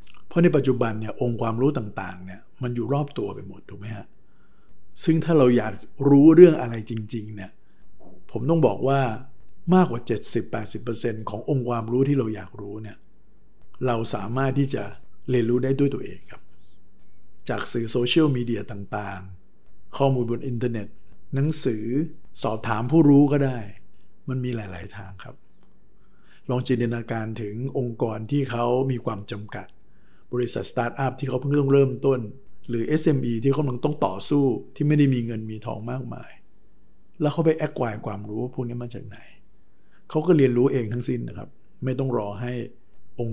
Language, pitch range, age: Thai, 105-135 Hz, 60-79